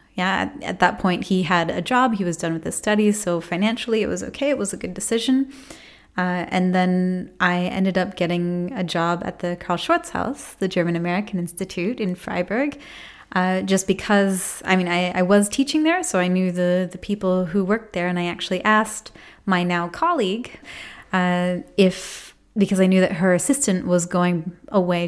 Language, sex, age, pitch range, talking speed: English, female, 20-39, 175-200 Hz, 190 wpm